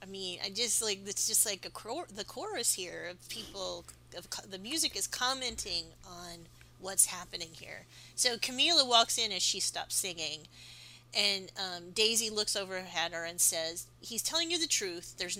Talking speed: 185 wpm